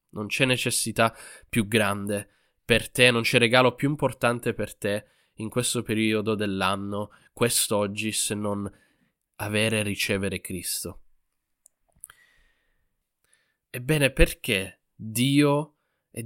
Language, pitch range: Italian, 105-125 Hz